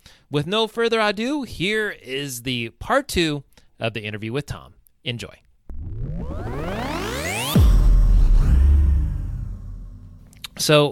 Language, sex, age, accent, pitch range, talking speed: English, male, 30-49, American, 115-160 Hz, 90 wpm